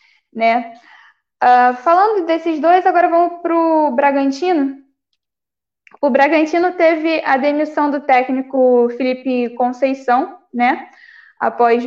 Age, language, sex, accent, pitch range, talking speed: 10-29, Portuguese, female, Brazilian, 245-305 Hz, 105 wpm